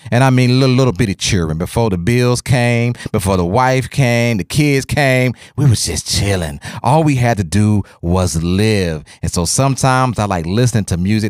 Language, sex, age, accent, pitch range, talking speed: English, male, 30-49, American, 100-135 Hz, 205 wpm